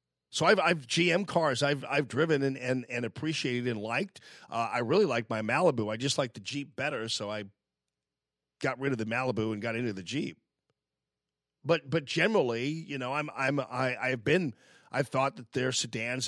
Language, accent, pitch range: English, American, 115-165 Hz